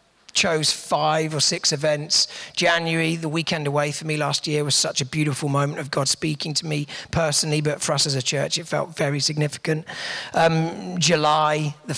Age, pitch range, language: 40-59, 140-160 Hz, English